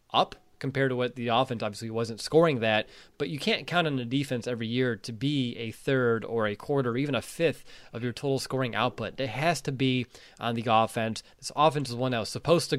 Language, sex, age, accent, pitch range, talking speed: English, male, 20-39, American, 115-150 Hz, 230 wpm